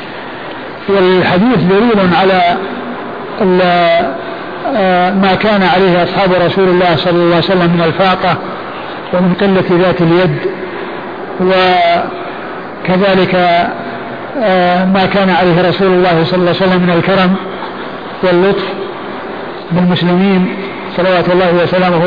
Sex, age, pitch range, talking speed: male, 50-69, 180-195 Hz, 100 wpm